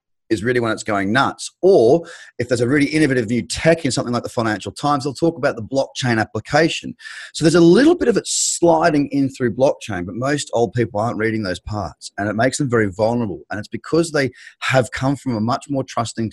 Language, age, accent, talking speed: English, 30-49, Australian, 230 wpm